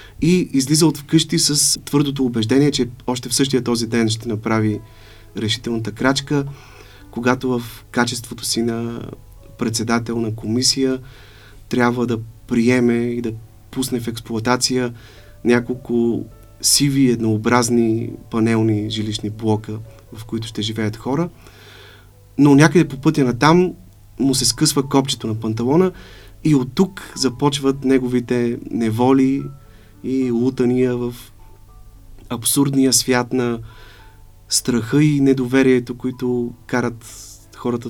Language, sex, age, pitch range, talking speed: Bulgarian, male, 30-49, 110-130 Hz, 115 wpm